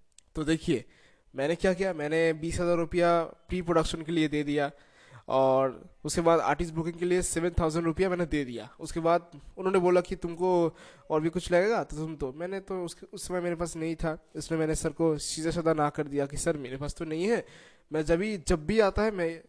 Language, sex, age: Hindi, male, 20-39